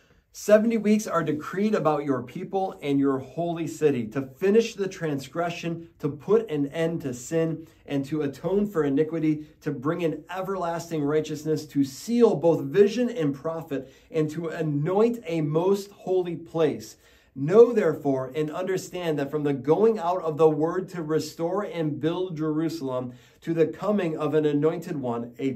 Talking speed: 160 wpm